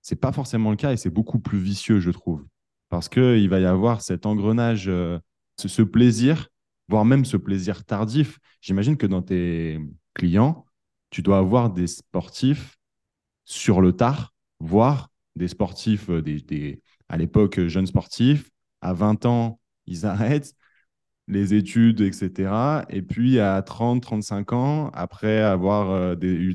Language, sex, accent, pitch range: French, male, French, 90-115 Hz